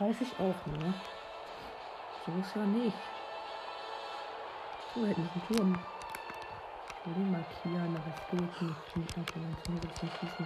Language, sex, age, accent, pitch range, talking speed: German, female, 50-69, German, 155-195 Hz, 145 wpm